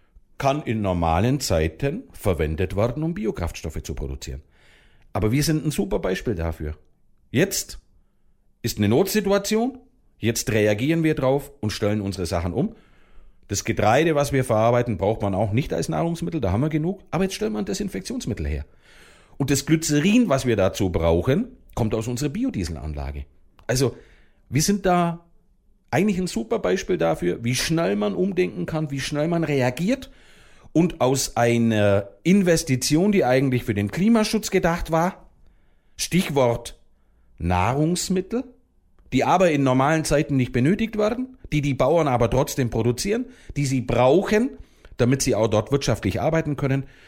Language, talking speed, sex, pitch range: German, 150 wpm, male, 100-165 Hz